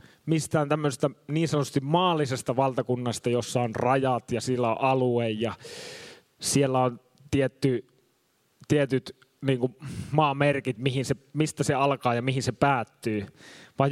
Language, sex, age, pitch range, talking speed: Finnish, male, 20-39, 130-165 Hz, 125 wpm